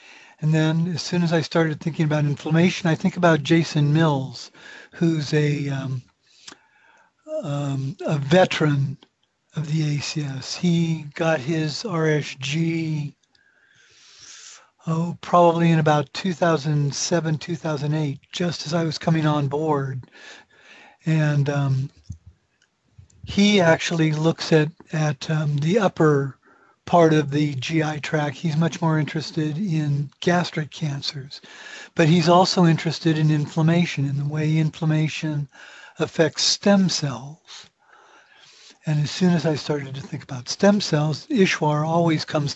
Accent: American